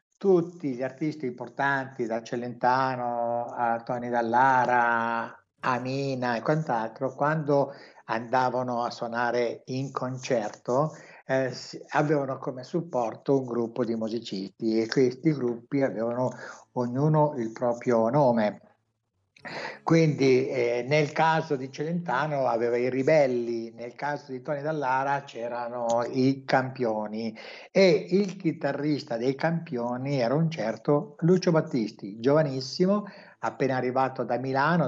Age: 60-79